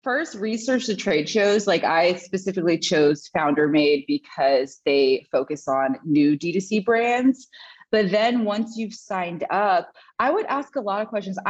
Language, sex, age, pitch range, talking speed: English, female, 20-39, 160-225 Hz, 160 wpm